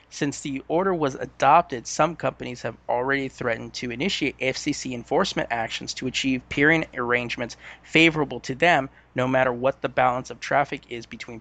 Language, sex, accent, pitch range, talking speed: English, male, American, 120-140 Hz, 165 wpm